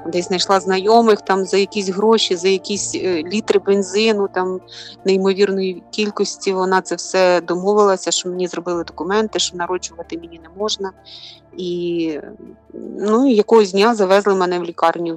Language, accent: Ukrainian, native